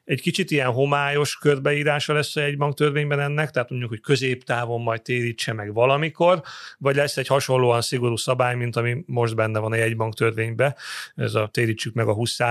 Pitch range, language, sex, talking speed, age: 120-145 Hz, Hungarian, male, 170 wpm, 40-59